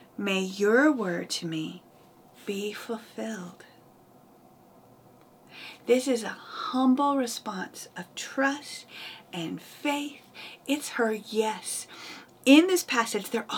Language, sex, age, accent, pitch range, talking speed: English, female, 40-59, American, 190-235 Hz, 105 wpm